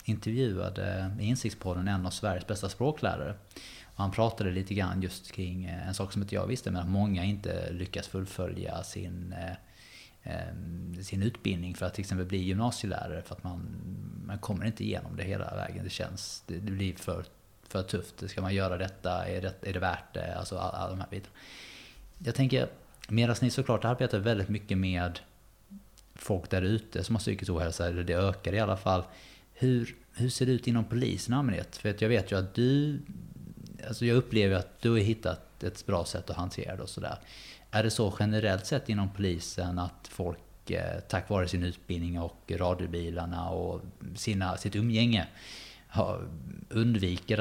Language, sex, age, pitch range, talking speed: Swedish, male, 20-39, 90-110 Hz, 175 wpm